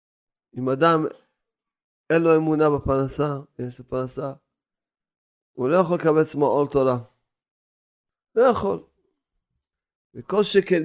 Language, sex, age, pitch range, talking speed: Hebrew, male, 40-59, 130-165 Hz, 110 wpm